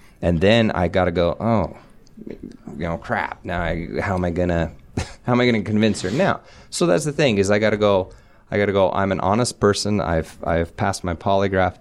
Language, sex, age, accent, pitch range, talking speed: English, male, 30-49, American, 85-105 Hz, 215 wpm